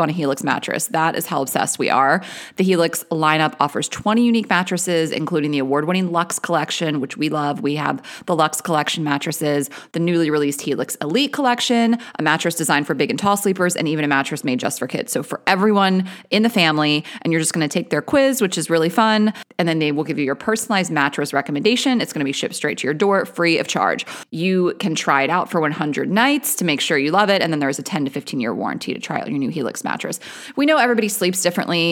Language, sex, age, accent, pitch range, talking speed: English, female, 30-49, American, 155-205 Hz, 240 wpm